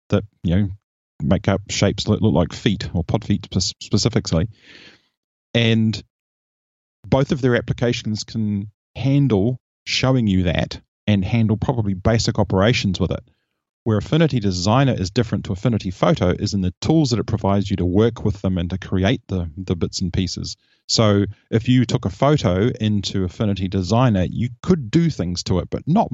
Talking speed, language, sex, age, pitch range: 175 wpm, English, male, 30-49, 95-115 Hz